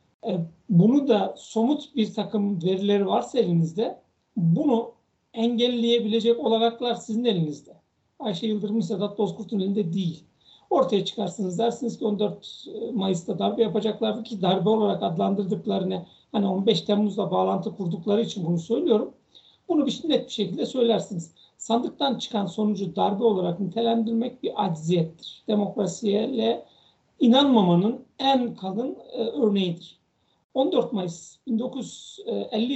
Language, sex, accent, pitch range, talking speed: Turkish, male, native, 195-235 Hz, 110 wpm